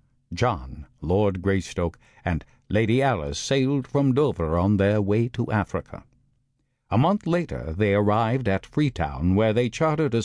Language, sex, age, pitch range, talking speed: English, male, 60-79, 95-130 Hz, 145 wpm